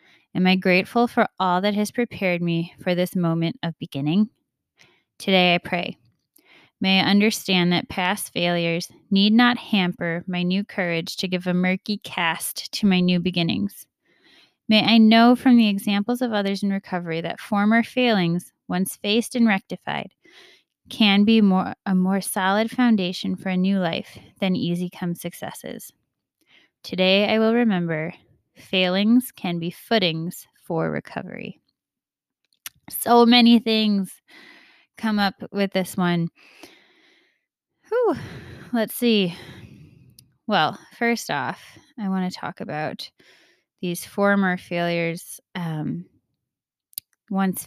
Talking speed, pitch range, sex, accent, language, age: 130 wpm, 175-220 Hz, female, American, English, 20-39